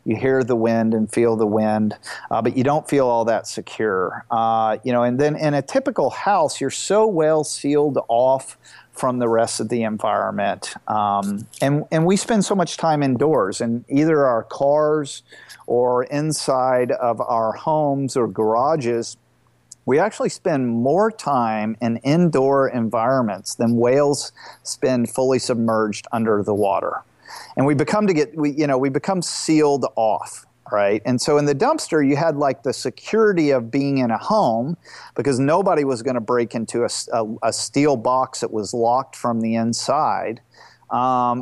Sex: male